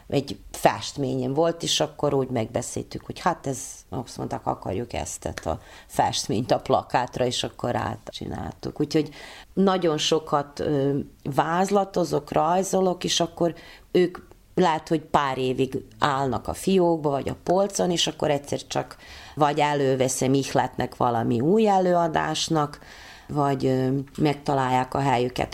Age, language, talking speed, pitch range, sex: 30-49, Hungarian, 125 wpm, 130-165 Hz, female